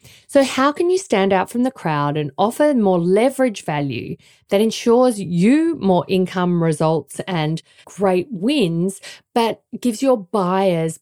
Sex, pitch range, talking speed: female, 170-220 Hz, 145 wpm